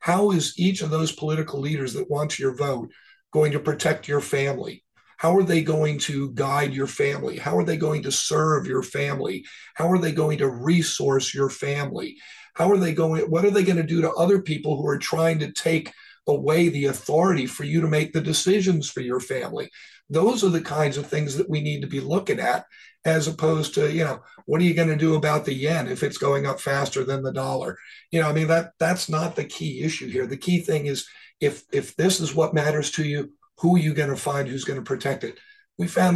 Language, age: English, 50-69